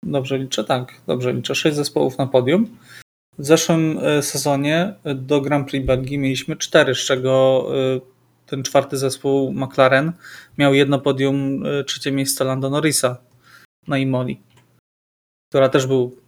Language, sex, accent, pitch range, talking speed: Polish, male, native, 130-145 Hz, 130 wpm